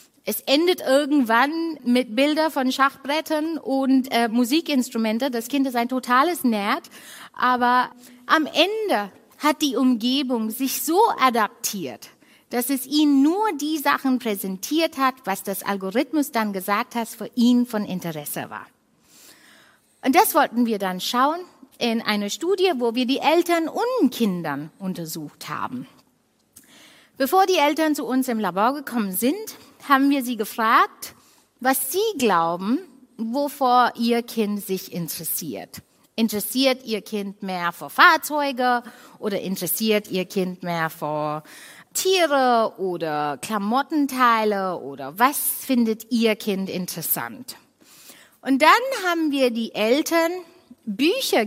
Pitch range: 205-285 Hz